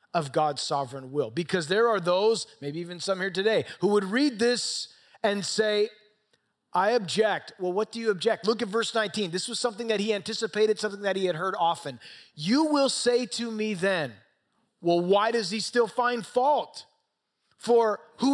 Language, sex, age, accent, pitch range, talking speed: English, male, 30-49, American, 190-250 Hz, 185 wpm